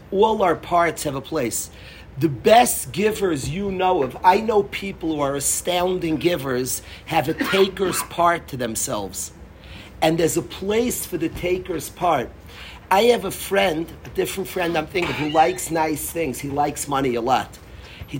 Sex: male